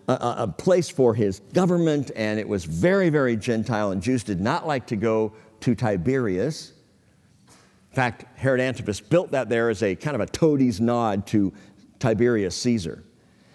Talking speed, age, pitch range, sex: 170 wpm, 50-69, 110-160 Hz, male